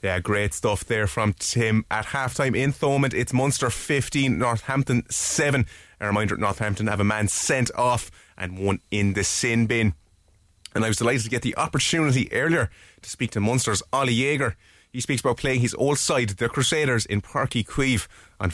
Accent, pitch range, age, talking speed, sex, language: Irish, 100-120 Hz, 30-49, 185 wpm, male, English